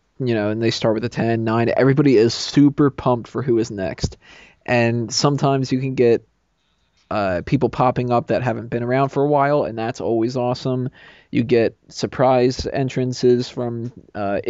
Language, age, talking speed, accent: English, 20-39, 180 wpm, American